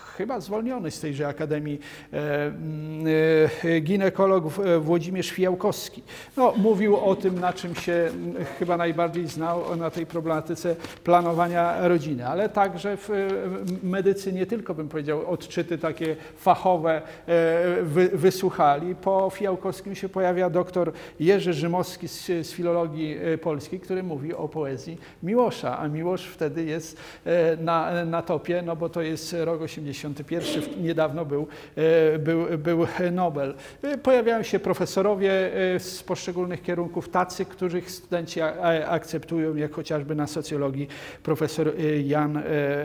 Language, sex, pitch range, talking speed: Polish, male, 160-180 Hz, 120 wpm